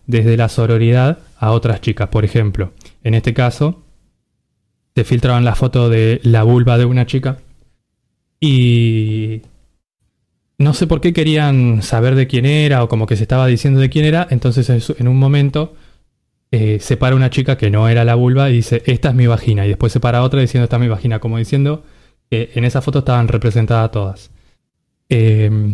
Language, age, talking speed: Spanish, 20-39, 190 wpm